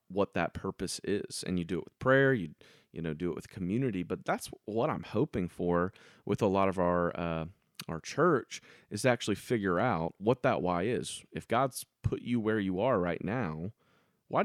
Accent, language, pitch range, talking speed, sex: American, English, 85-115 Hz, 210 wpm, male